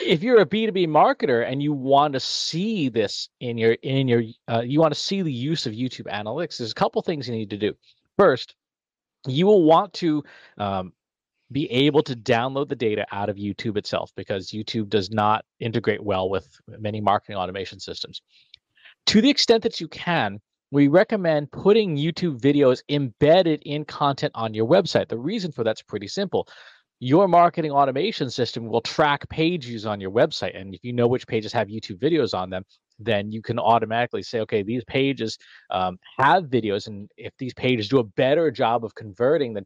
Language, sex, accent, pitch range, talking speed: English, male, American, 110-155 Hz, 190 wpm